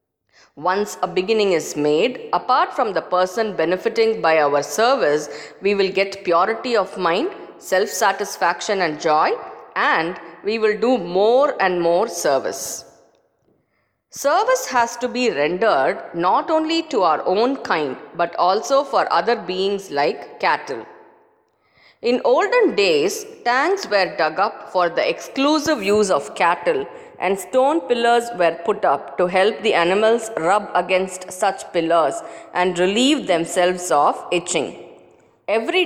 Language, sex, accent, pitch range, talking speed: English, female, Indian, 175-275 Hz, 135 wpm